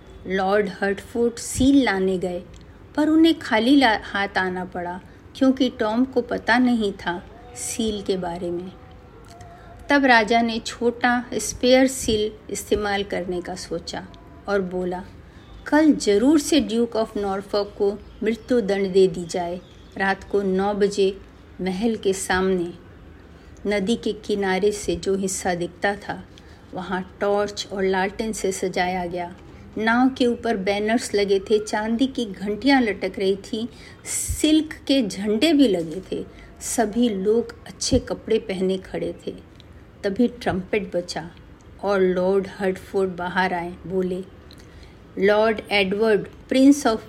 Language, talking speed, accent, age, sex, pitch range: Hindi, 135 wpm, native, 50-69, female, 185-230 Hz